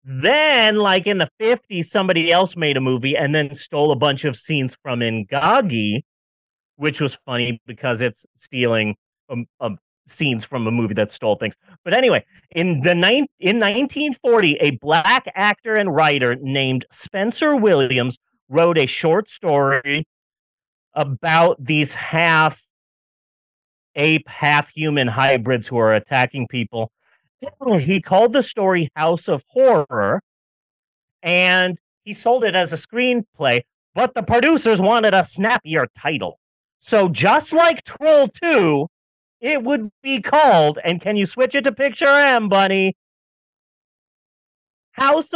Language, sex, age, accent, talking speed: English, male, 30-49, American, 130 wpm